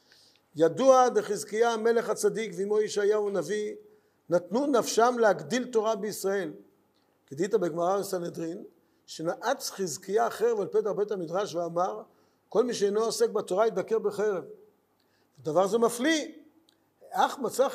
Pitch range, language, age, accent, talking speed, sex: 190-255 Hz, Hebrew, 50-69, native, 120 wpm, male